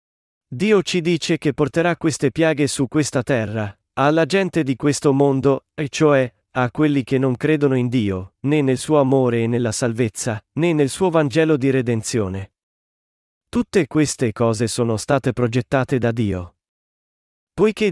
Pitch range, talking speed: 125-155 Hz, 155 wpm